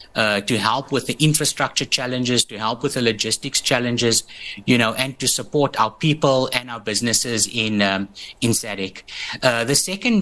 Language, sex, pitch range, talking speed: English, male, 110-140 Hz, 175 wpm